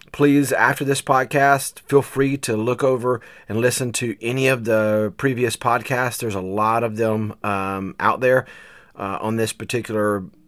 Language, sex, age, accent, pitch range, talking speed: English, male, 30-49, American, 100-125 Hz, 165 wpm